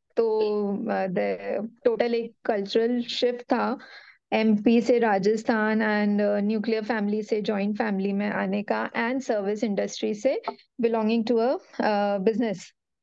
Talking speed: 115 wpm